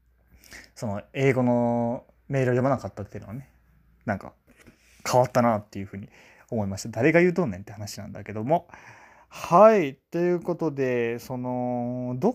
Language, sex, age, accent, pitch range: Japanese, male, 20-39, native, 105-170 Hz